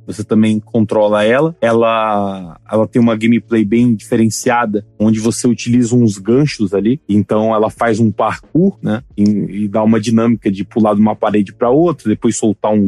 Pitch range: 110-125 Hz